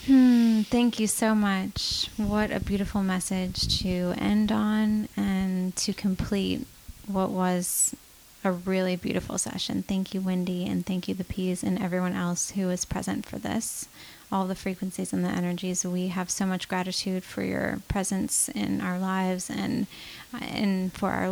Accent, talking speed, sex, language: American, 165 wpm, female, English